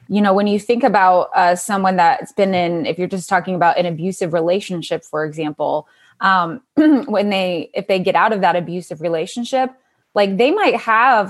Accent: American